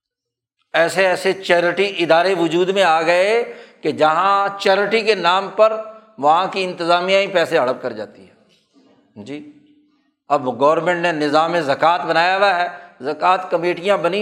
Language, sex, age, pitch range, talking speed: Urdu, male, 60-79, 150-195 Hz, 150 wpm